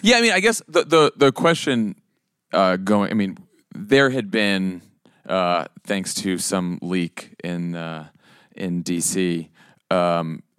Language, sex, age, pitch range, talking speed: English, male, 30-49, 85-95 Hz, 145 wpm